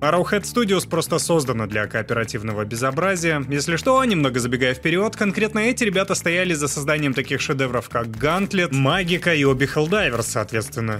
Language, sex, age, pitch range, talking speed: Russian, male, 20-39, 125-175 Hz, 140 wpm